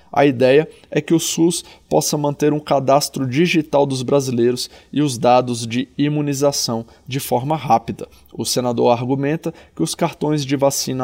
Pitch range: 125-150 Hz